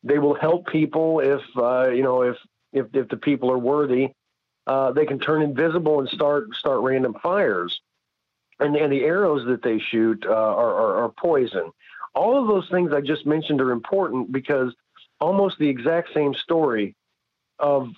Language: English